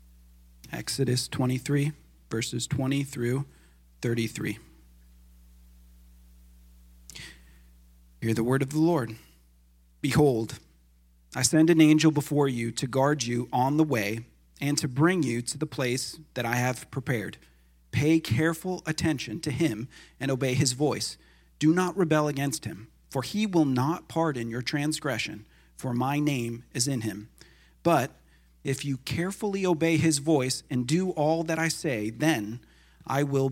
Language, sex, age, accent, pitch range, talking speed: English, male, 40-59, American, 115-160 Hz, 140 wpm